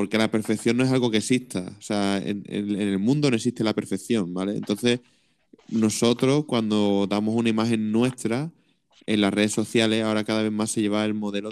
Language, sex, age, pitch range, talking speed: Spanish, male, 20-39, 105-120 Hz, 205 wpm